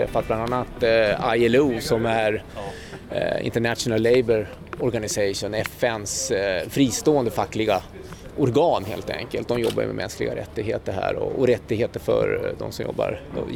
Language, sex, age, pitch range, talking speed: Swedish, male, 30-49, 110-130 Hz, 135 wpm